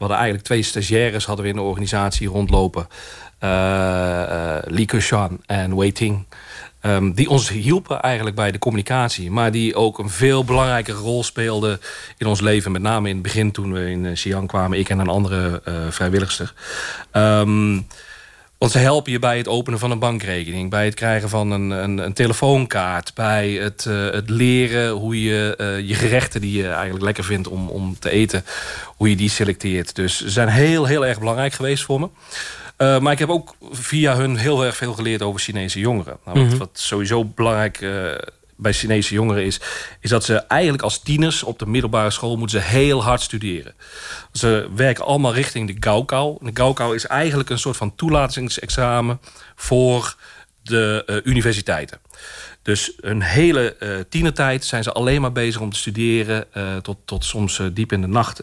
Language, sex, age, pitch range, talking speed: Dutch, male, 40-59, 100-125 Hz, 190 wpm